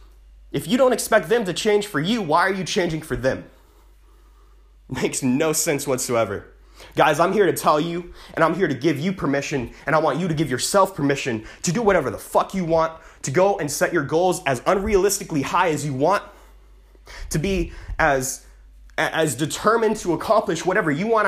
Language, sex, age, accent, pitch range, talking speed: English, male, 30-49, American, 145-205 Hz, 195 wpm